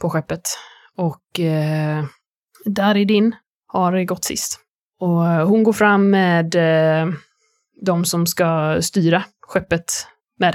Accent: native